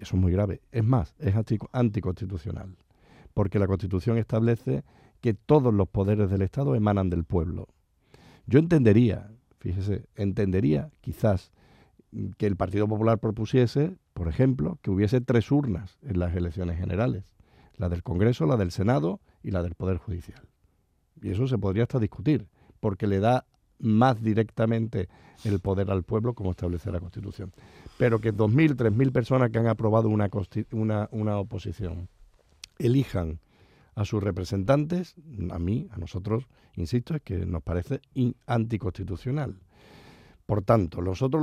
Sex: male